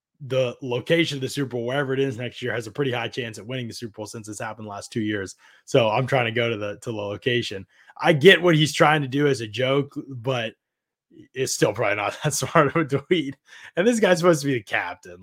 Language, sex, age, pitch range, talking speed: English, male, 20-39, 110-145 Hz, 255 wpm